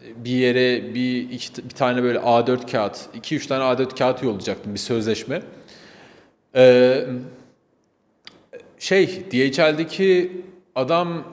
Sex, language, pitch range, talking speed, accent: male, Turkish, 120-155 Hz, 110 wpm, native